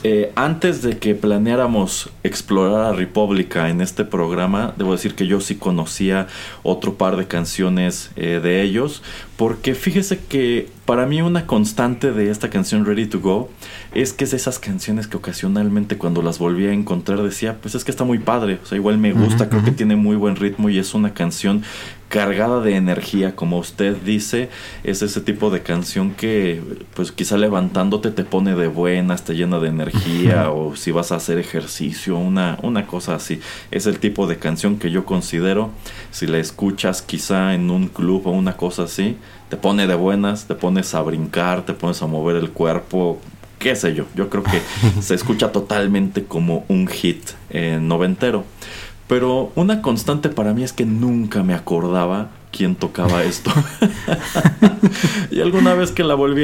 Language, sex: Spanish, male